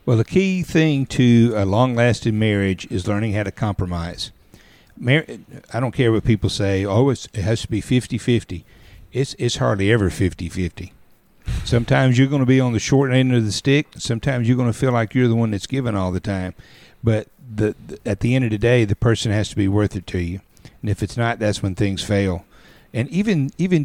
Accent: American